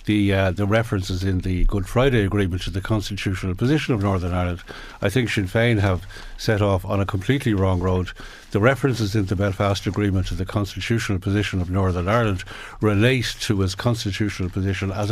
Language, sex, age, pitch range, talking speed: English, male, 60-79, 95-110 Hz, 185 wpm